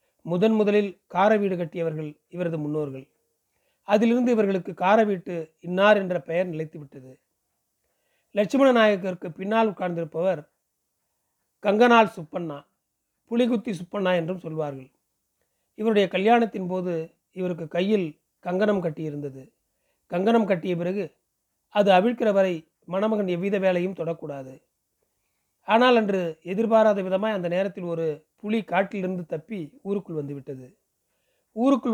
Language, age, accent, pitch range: Tamil, 40-59, native, 165-205 Hz